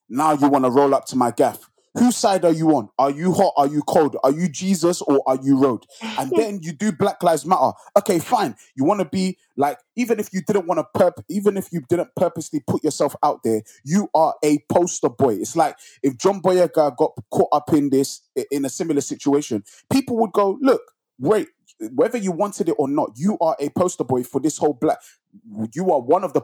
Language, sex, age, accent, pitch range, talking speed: English, male, 20-39, British, 150-195 Hz, 225 wpm